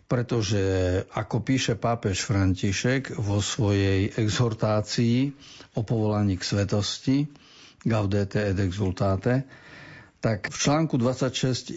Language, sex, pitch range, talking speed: Slovak, male, 100-120 Hz, 95 wpm